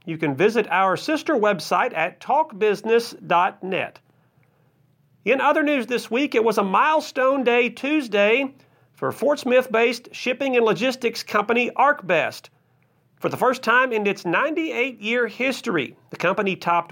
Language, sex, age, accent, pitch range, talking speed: English, male, 40-59, American, 165-245 Hz, 135 wpm